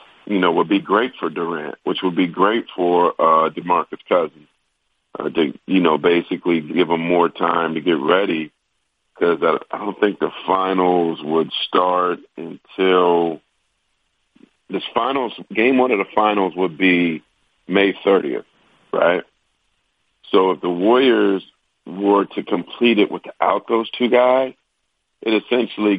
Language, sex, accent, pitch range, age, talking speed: English, male, American, 85-100 Hz, 50-69, 145 wpm